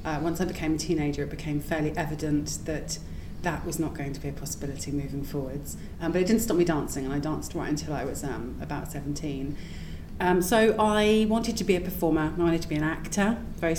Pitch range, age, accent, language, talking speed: 150-180 Hz, 30-49, British, English, 235 wpm